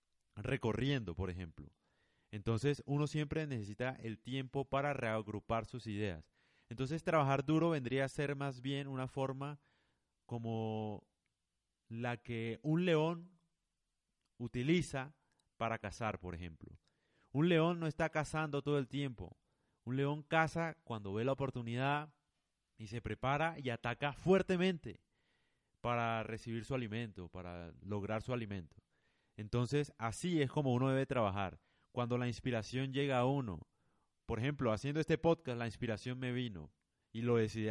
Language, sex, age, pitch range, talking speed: Spanish, male, 30-49, 110-140 Hz, 140 wpm